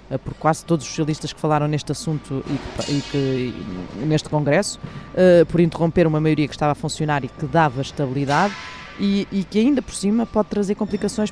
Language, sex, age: Portuguese, female, 20-39